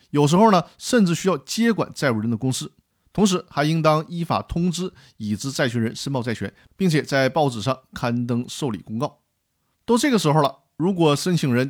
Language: Chinese